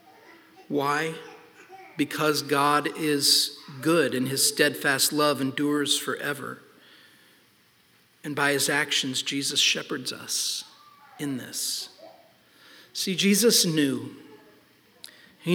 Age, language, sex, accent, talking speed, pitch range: 50-69, English, male, American, 95 wpm, 145-190 Hz